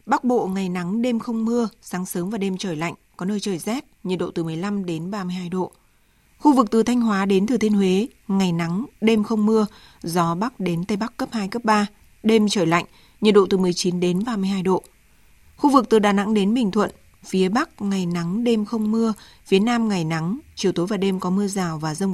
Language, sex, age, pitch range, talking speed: Vietnamese, female, 20-39, 180-225 Hz, 230 wpm